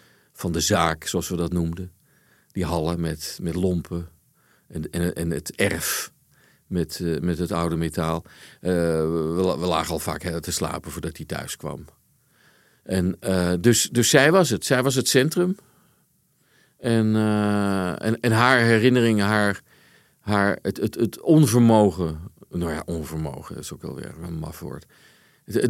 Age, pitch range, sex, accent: 50-69, 85-110 Hz, male, Dutch